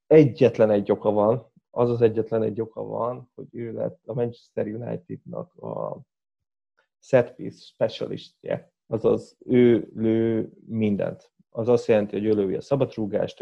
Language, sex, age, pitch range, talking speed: Hungarian, male, 20-39, 110-125 Hz, 145 wpm